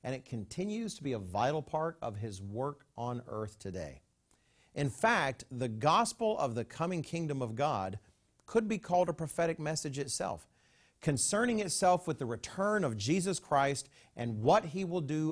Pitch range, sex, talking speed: 110-170 Hz, male, 170 wpm